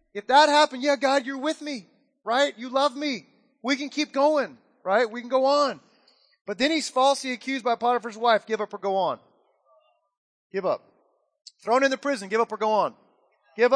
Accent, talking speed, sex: American, 200 wpm, male